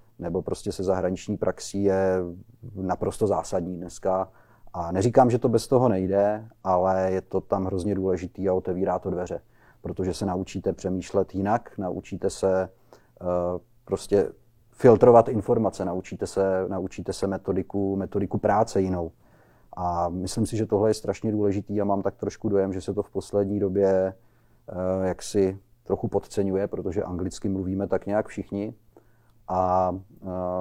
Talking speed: 140 wpm